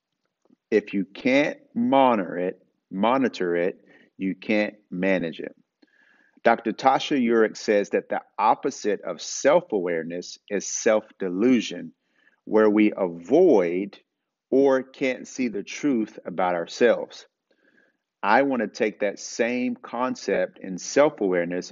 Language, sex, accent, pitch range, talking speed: English, male, American, 95-135 Hz, 115 wpm